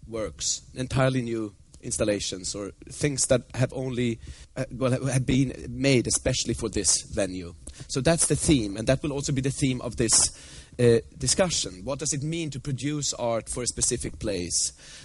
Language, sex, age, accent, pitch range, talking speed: English, male, 30-49, Swedish, 115-140 Hz, 175 wpm